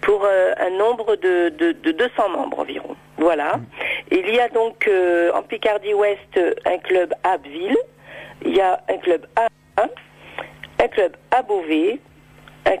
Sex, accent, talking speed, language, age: female, French, 160 wpm, French, 50-69